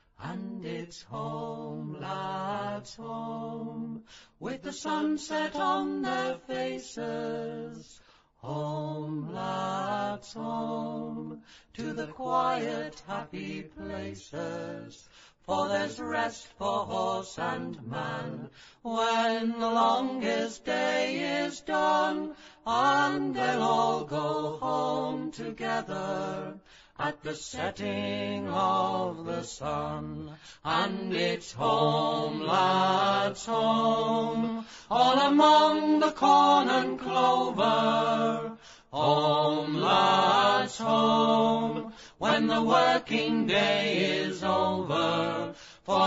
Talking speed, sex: 85 wpm, male